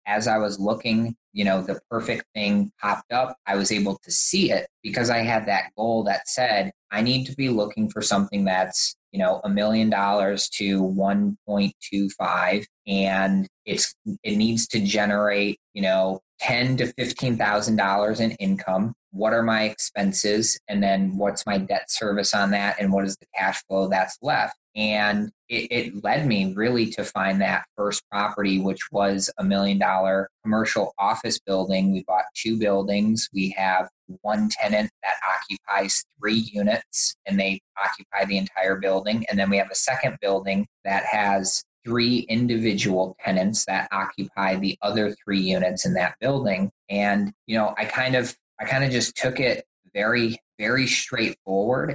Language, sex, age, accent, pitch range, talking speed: English, male, 20-39, American, 95-110 Hz, 175 wpm